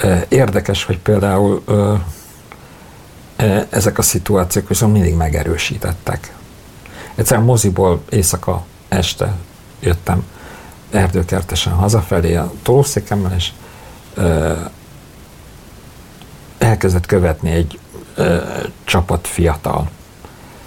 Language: Hungarian